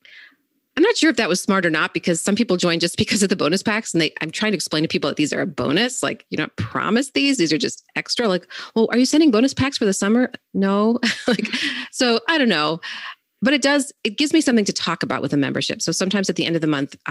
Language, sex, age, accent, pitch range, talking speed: English, female, 30-49, American, 155-220 Hz, 275 wpm